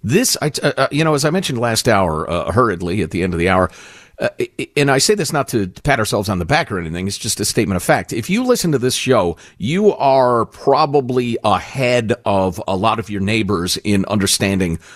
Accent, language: American, English